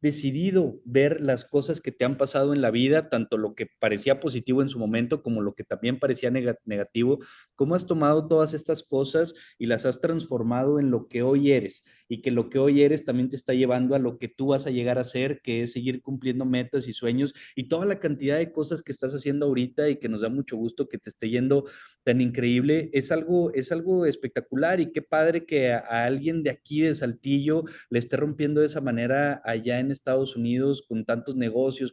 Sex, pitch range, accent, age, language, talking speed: male, 125-155 Hz, Mexican, 30-49, Spanish, 220 wpm